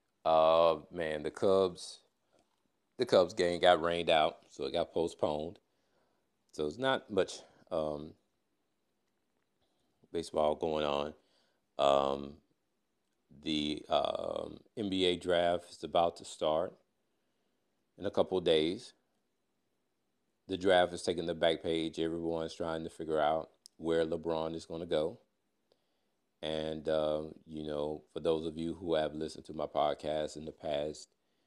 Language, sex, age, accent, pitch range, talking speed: English, male, 40-59, American, 75-85 Hz, 135 wpm